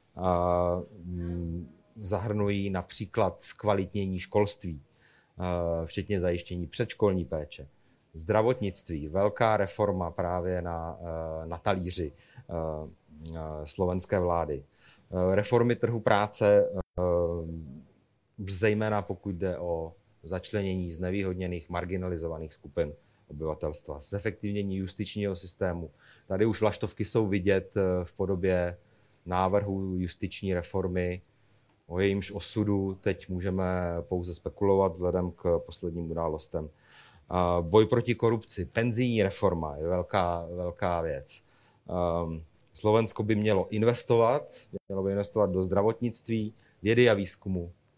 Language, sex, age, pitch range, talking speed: Slovak, male, 30-49, 85-105 Hz, 95 wpm